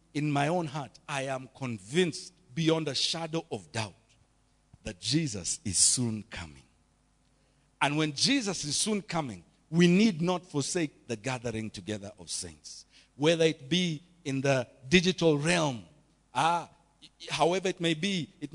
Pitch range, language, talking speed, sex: 130-185 Hz, English, 150 wpm, male